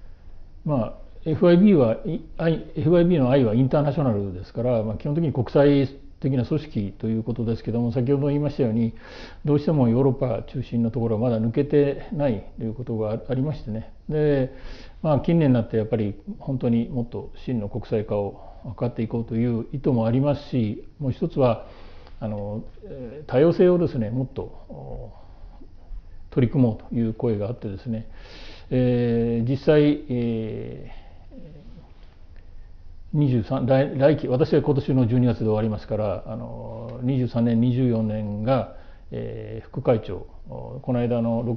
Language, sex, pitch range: Japanese, male, 110-135 Hz